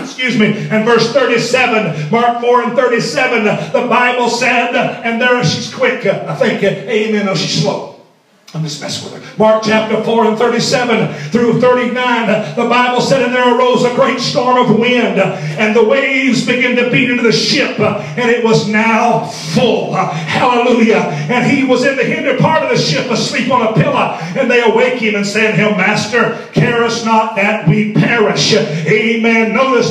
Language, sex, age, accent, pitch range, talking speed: English, male, 40-59, American, 225-270 Hz, 185 wpm